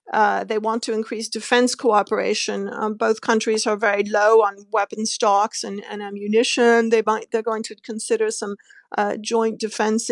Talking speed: 165 wpm